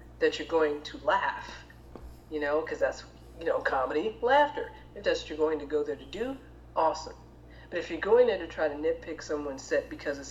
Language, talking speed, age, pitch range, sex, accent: English, 215 wpm, 40-59, 140-235 Hz, female, American